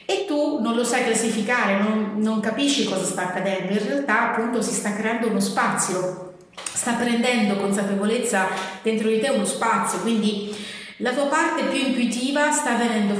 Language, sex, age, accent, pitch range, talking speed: Italian, female, 30-49, native, 205-250 Hz, 165 wpm